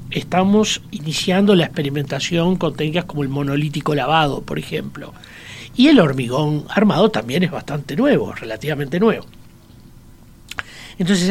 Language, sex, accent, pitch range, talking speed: Spanish, male, Argentinian, 145-195 Hz, 120 wpm